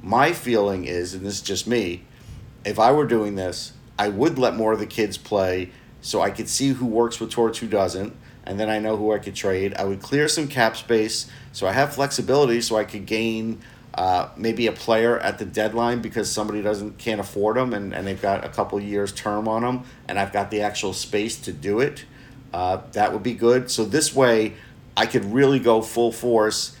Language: English